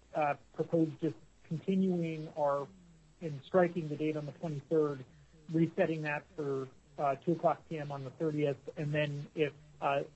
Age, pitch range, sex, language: 40-59, 135-155 Hz, male, English